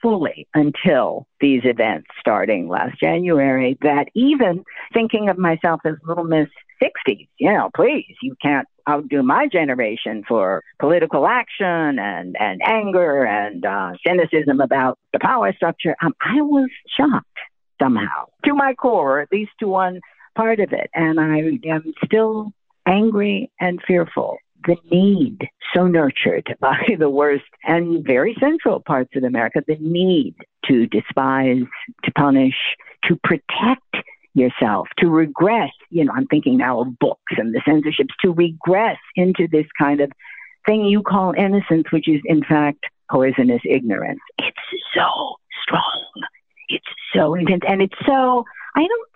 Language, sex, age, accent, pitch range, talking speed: English, female, 50-69, American, 150-215 Hz, 145 wpm